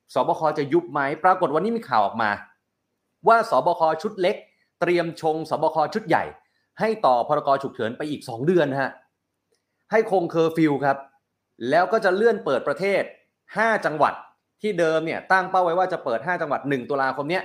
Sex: male